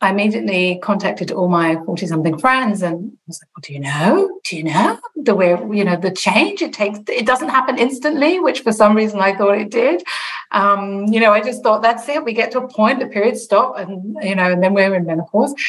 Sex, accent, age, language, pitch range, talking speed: female, British, 40-59, English, 180-225 Hz, 245 wpm